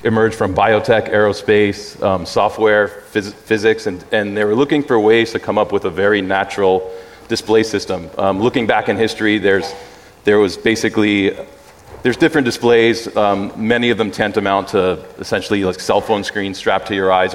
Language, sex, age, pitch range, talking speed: English, male, 30-49, 100-110 Hz, 170 wpm